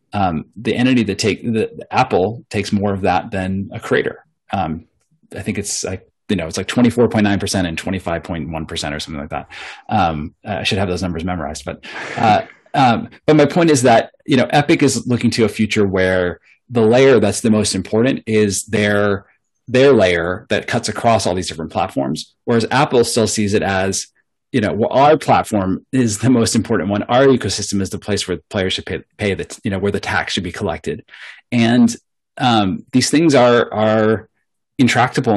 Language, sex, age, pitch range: English, male, 30-49, 95-115 Hz